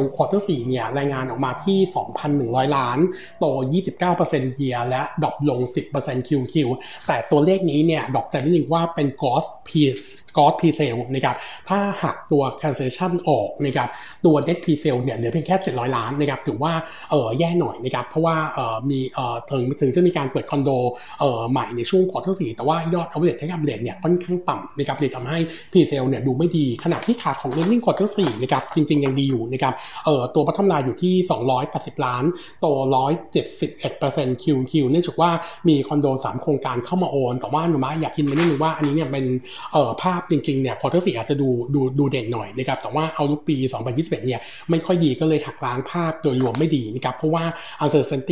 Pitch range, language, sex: 130-165 Hz, Thai, male